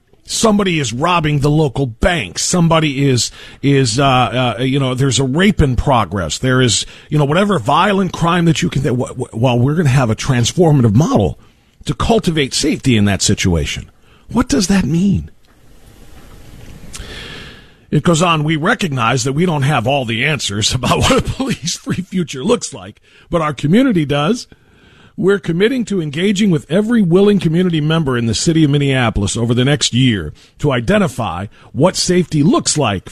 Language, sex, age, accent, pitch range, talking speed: English, male, 50-69, American, 120-175 Hz, 175 wpm